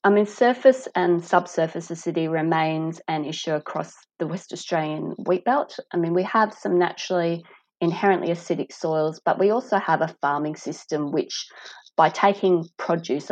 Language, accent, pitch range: English, Australian, 155-185 Hz